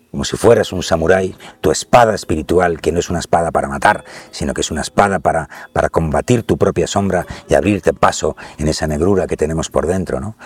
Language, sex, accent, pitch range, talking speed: Spanish, male, Spanish, 85-110 Hz, 205 wpm